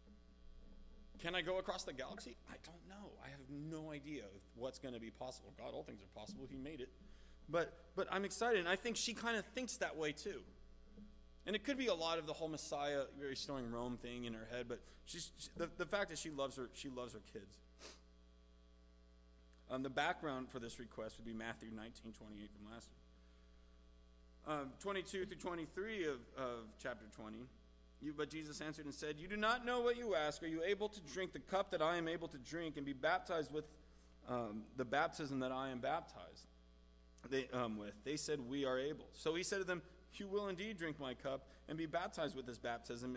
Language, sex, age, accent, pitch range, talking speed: English, male, 30-49, American, 110-170 Hz, 215 wpm